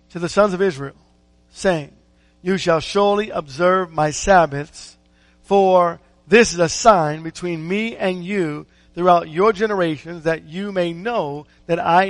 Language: English